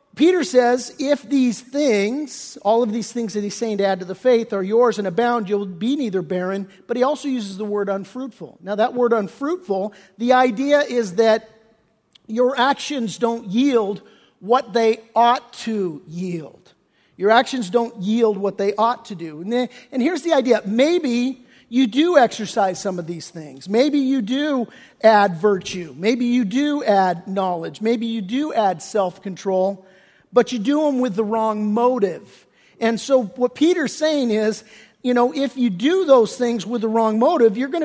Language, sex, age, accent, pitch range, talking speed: English, male, 50-69, American, 215-260 Hz, 180 wpm